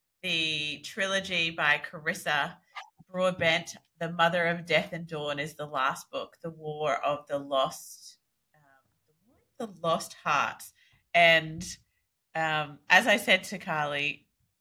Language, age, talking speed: English, 30-49, 125 wpm